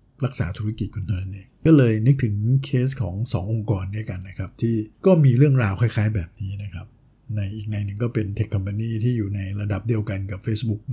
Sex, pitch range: male, 105-125 Hz